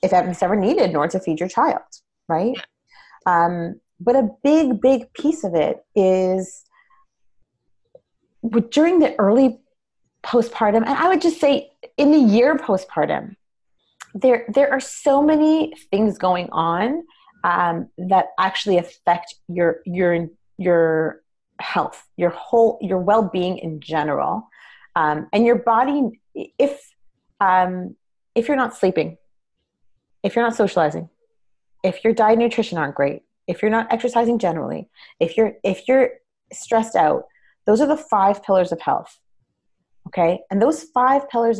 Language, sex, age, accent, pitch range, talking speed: English, female, 30-49, American, 180-260 Hz, 145 wpm